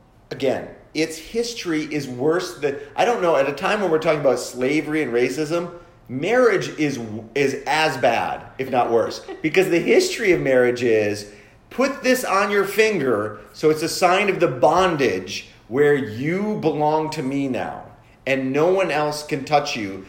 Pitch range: 115-175 Hz